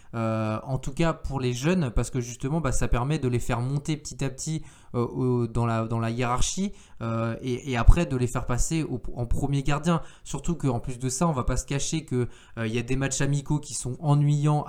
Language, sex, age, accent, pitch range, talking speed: French, male, 20-39, French, 120-150 Hz, 240 wpm